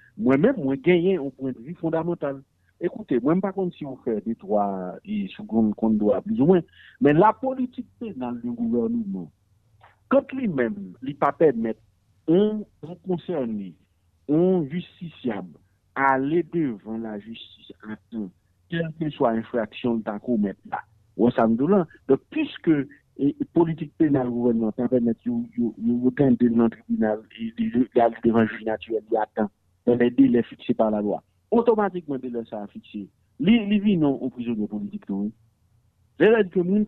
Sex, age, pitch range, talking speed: male, 50-69, 110-180 Hz, 175 wpm